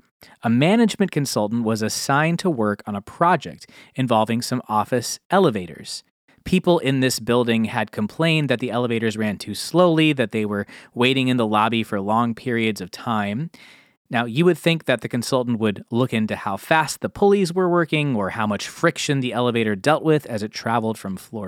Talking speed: 185 wpm